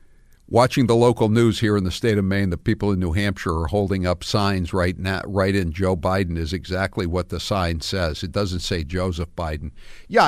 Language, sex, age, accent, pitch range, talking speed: English, male, 60-79, American, 90-125 Hz, 215 wpm